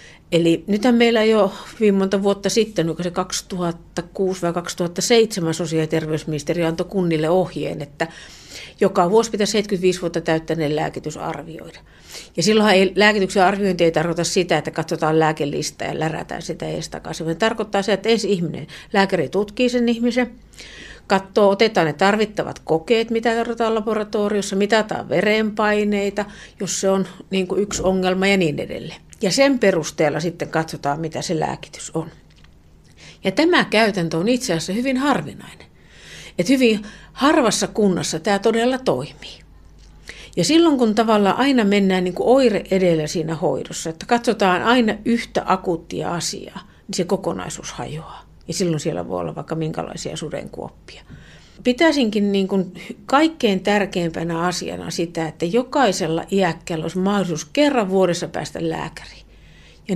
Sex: female